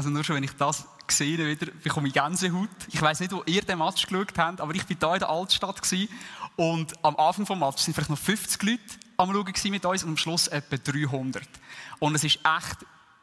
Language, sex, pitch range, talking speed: German, male, 150-180 Hz, 220 wpm